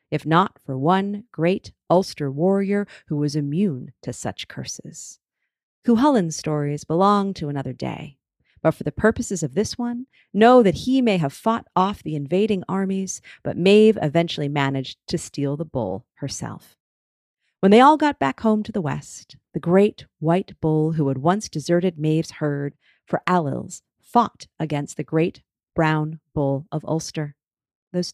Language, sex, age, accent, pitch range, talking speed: English, female, 40-59, American, 150-205 Hz, 160 wpm